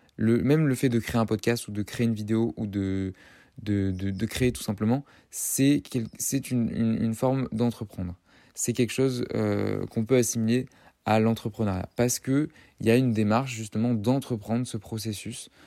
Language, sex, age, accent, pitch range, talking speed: French, male, 20-39, French, 100-120 Hz, 185 wpm